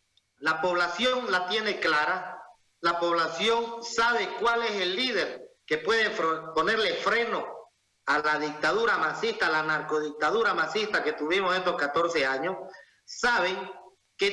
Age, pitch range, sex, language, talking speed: 40-59, 170-240 Hz, male, Spanish, 130 wpm